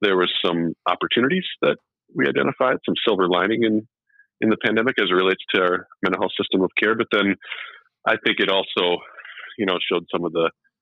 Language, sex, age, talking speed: English, male, 40-59, 200 wpm